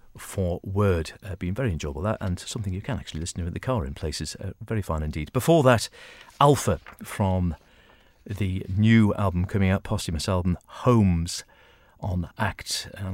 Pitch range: 90-110 Hz